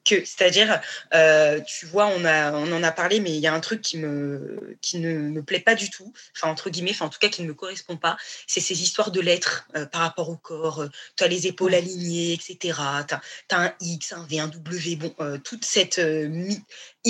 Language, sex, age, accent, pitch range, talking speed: French, female, 20-39, French, 175-230 Hz, 235 wpm